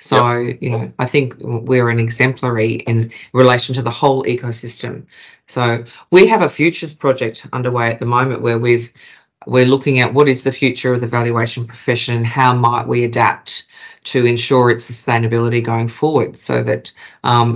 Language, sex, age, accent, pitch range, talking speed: English, female, 40-59, Australian, 115-130 Hz, 170 wpm